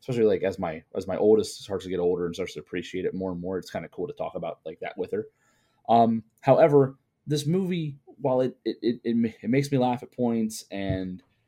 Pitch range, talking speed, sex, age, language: 100-130 Hz, 240 wpm, male, 20-39, English